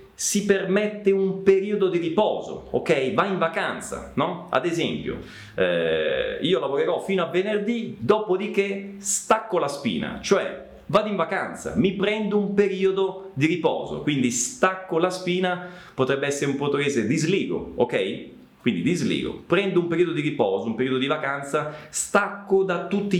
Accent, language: native, Italian